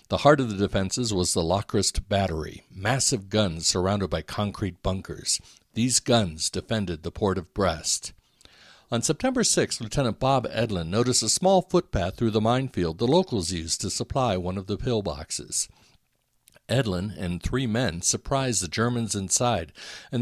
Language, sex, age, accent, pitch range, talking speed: English, male, 60-79, American, 95-125 Hz, 155 wpm